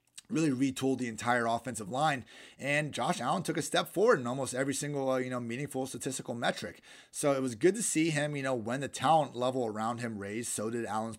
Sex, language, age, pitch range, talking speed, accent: male, English, 30-49, 115-145 Hz, 225 wpm, American